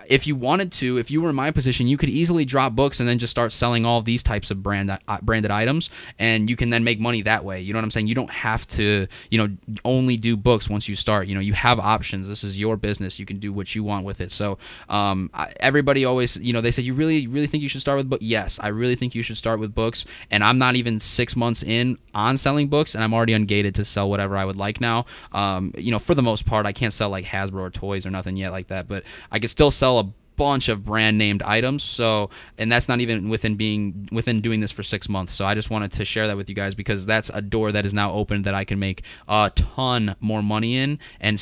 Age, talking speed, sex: 20-39, 270 wpm, male